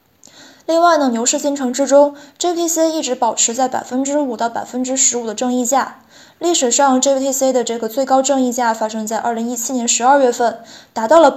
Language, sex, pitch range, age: Chinese, female, 235-280 Hz, 20-39